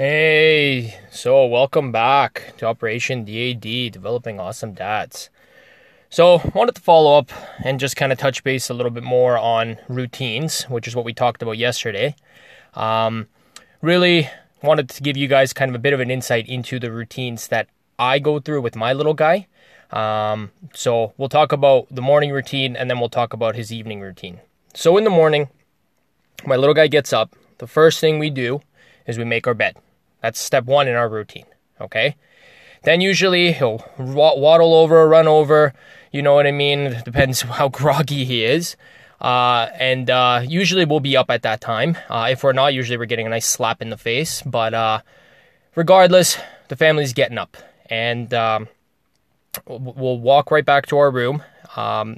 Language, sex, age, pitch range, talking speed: English, male, 20-39, 120-155 Hz, 185 wpm